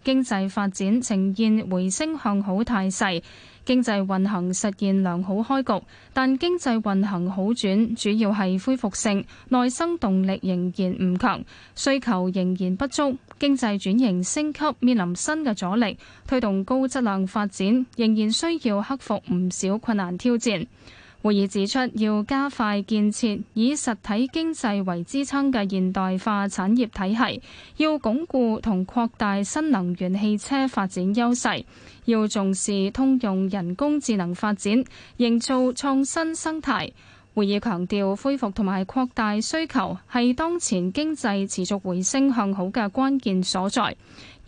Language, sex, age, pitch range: Chinese, female, 10-29, 195-260 Hz